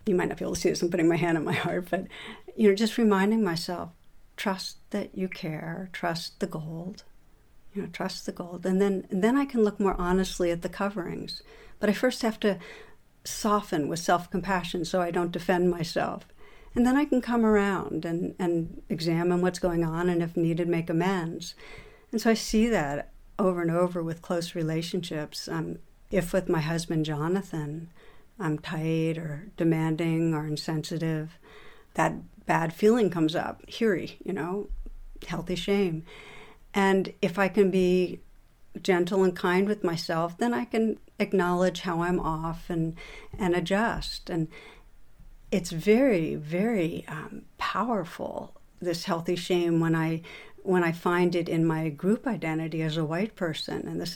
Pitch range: 165-195 Hz